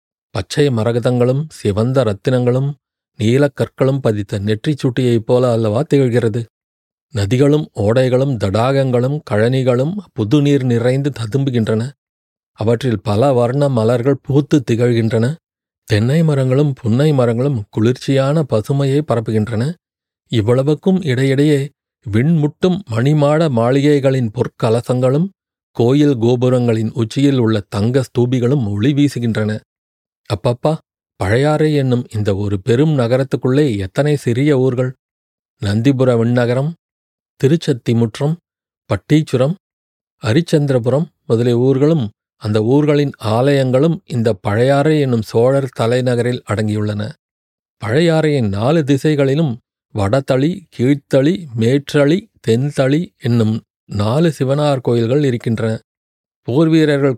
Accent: native